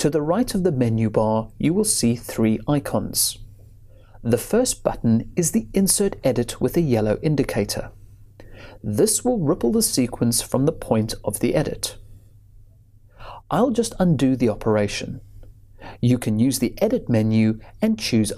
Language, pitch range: English, 105-155 Hz